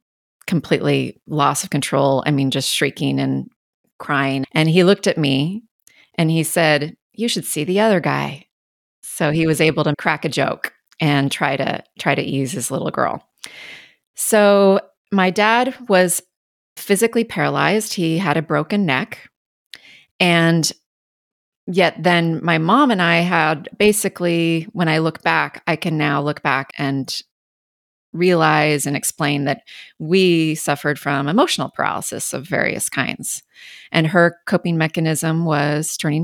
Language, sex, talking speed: English, female, 145 wpm